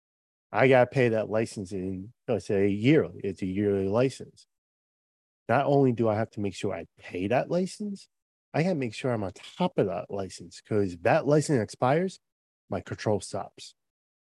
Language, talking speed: English, 190 wpm